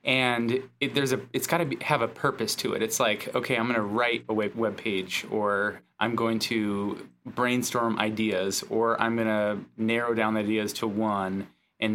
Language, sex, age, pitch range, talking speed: English, male, 20-39, 110-130 Hz, 190 wpm